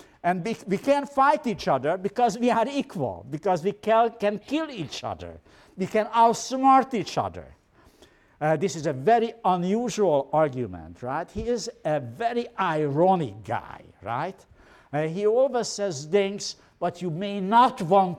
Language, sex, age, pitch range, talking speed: English, male, 60-79, 130-205 Hz, 160 wpm